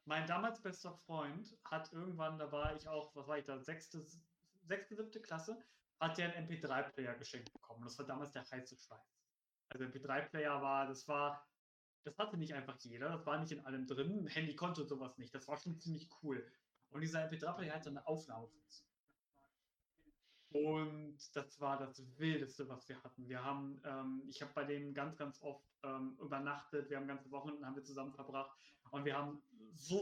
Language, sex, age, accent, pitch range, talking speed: German, male, 30-49, German, 145-185 Hz, 190 wpm